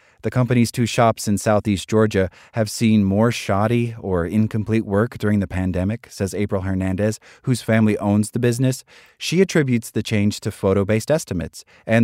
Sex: male